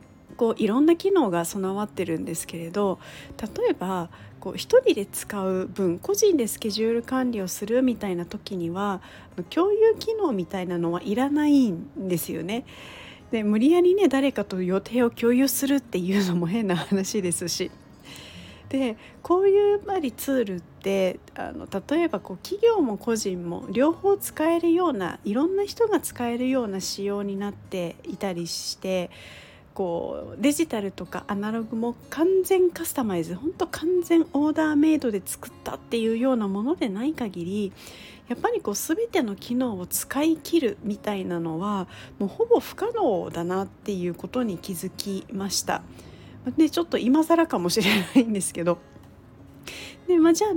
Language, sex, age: Japanese, female, 40-59